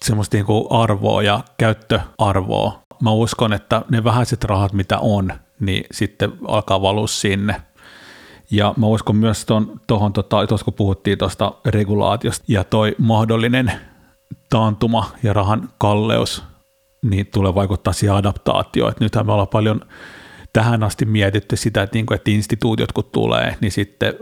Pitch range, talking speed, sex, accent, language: 100-115 Hz, 145 wpm, male, native, Finnish